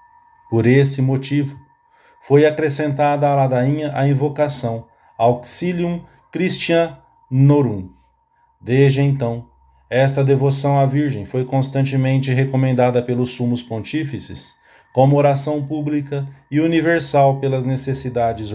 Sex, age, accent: male, 40-59, Brazilian